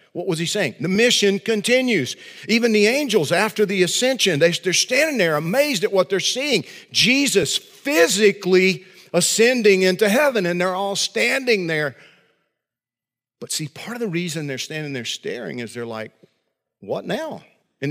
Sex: male